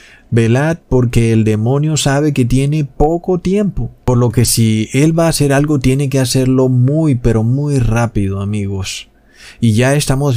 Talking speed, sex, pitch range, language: 170 wpm, male, 115-140 Hz, Spanish